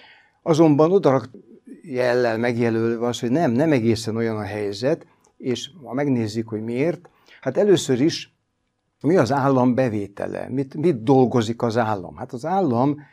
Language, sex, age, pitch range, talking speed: Hungarian, male, 60-79, 115-135 Hz, 145 wpm